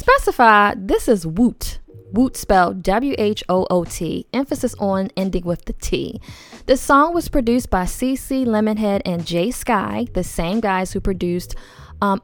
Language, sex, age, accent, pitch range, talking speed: English, female, 10-29, American, 175-230 Hz, 140 wpm